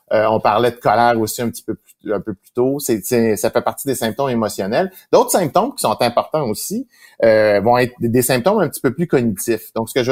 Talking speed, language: 250 wpm, French